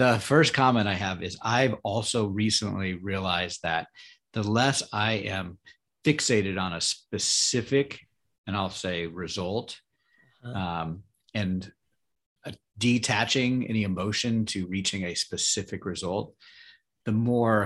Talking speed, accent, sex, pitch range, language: 120 wpm, American, male, 95-115 Hz, English